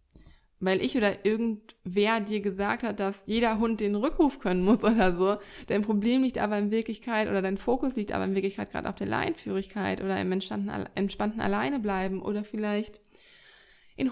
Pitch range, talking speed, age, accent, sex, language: 195-225 Hz, 180 wpm, 20-39, German, female, German